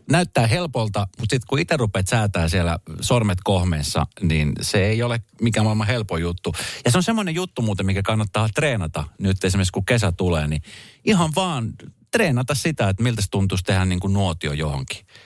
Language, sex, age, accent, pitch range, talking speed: Finnish, male, 40-59, native, 95-130 Hz, 185 wpm